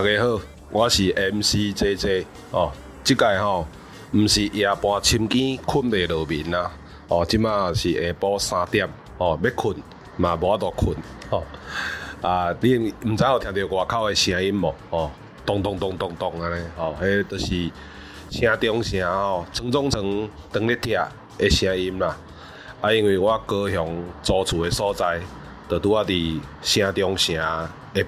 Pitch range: 85-105 Hz